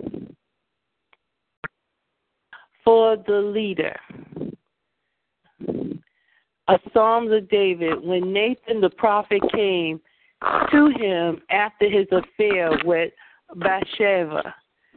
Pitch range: 185-230 Hz